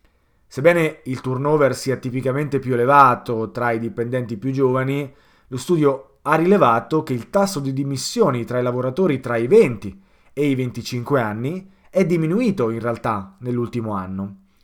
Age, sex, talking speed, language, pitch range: 20-39, male, 150 wpm, Italian, 120-155 Hz